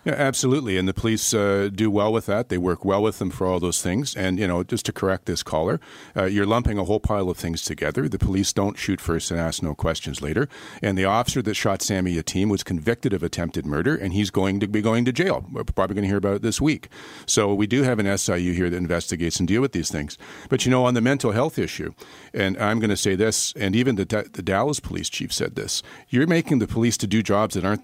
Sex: male